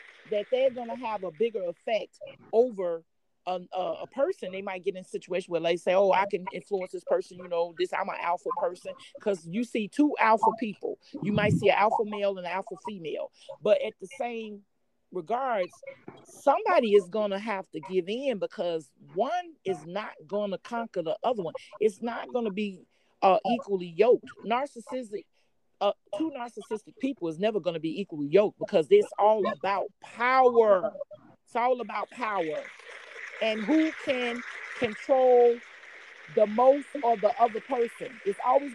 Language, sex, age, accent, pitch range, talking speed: English, male, 40-59, American, 190-255 Hz, 175 wpm